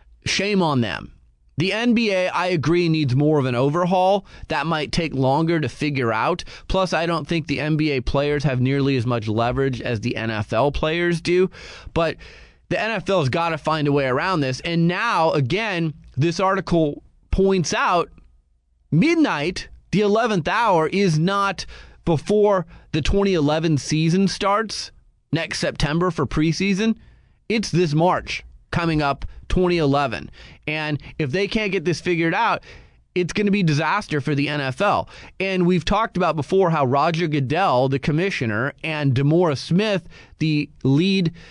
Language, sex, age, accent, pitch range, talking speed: English, male, 30-49, American, 140-185 Hz, 155 wpm